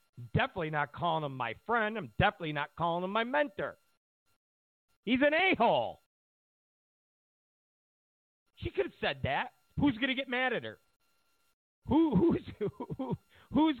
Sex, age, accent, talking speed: male, 50-69, American, 125 wpm